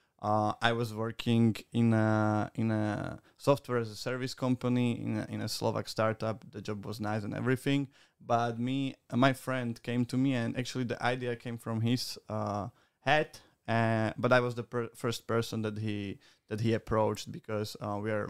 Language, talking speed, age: Slovak, 195 wpm, 20-39